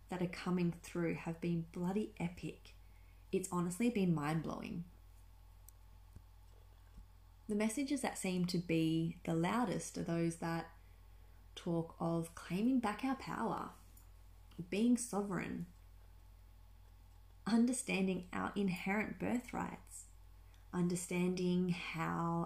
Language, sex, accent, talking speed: English, female, Australian, 100 wpm